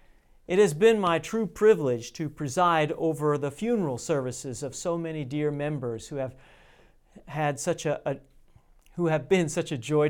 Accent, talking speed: American, 170 wpm